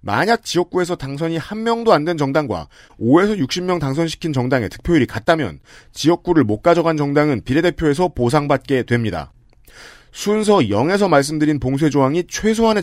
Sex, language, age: male, Korean, 40-59